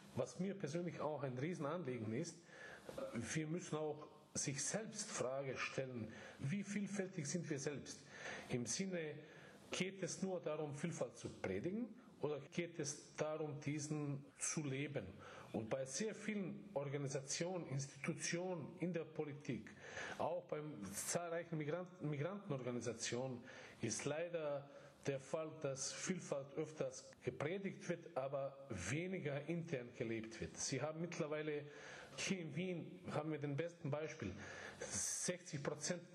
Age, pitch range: 40-59, 135-170 Hz